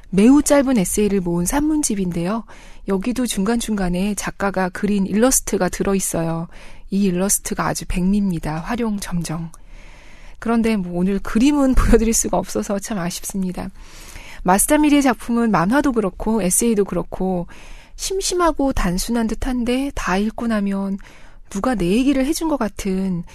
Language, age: Korean, 20-39